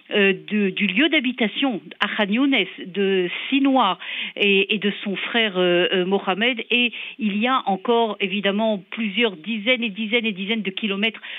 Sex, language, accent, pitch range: female, French, French, 195-240 Hz